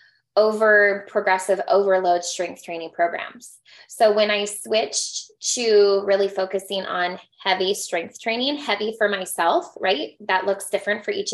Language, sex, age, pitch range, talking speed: English, female, 20-39, 180-210 Hz, 140 wpm